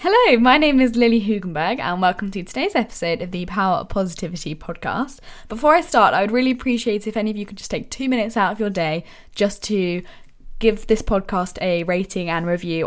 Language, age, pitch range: English, 10-29, 175-220 Hz